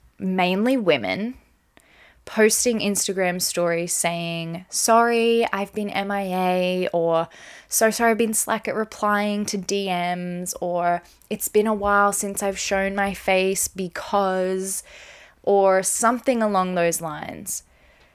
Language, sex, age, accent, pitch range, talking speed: English, female, 20-39, Australian, 180-230 Hz, 120 wpm